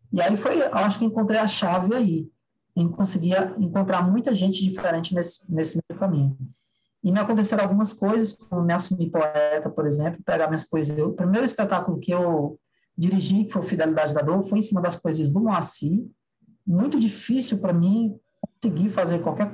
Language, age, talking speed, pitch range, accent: Portuguese, 20-39, 180 wpm, 160-200 Hz, Brazilian